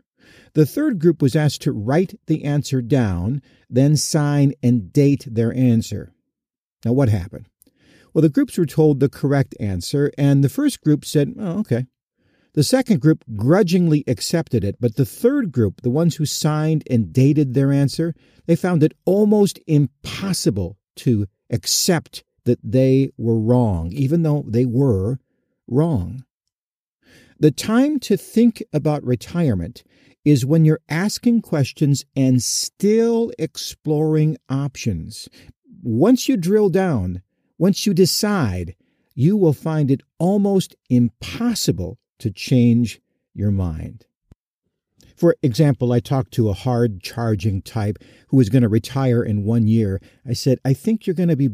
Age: 50-69